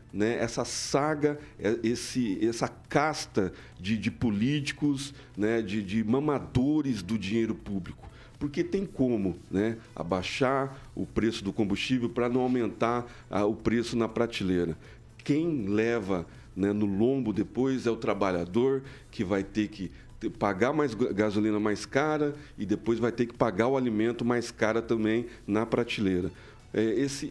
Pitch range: 105-130 Hz